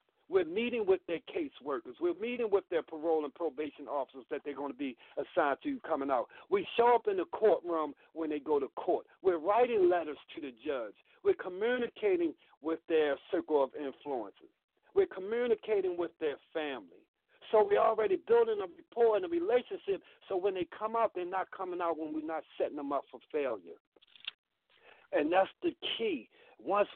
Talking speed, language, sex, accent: 185 wpm, English, male, American